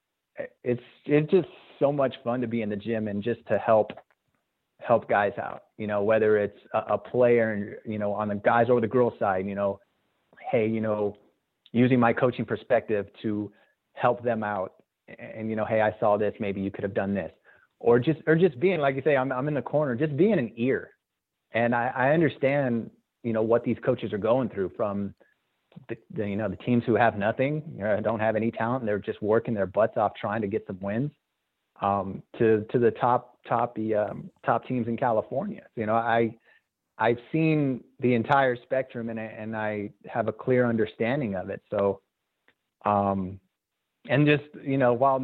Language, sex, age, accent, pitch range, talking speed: English, male, 30-49, American, 105-130 Hz, 205 wpm